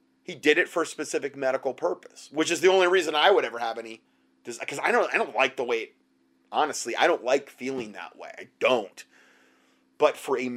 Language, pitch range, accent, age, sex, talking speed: English, 105-160 Hz, American, 30-49, male, 210 wpm